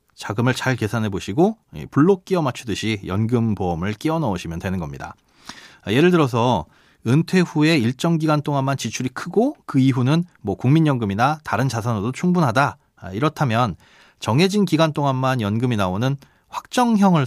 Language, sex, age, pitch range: Korean, male, 30-49, 110-160 Hz